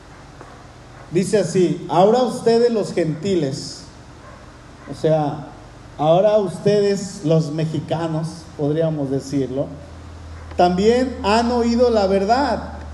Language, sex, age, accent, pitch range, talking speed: Spanish, male, 40-59, Mexican, 175-230 Hz, 90 wpm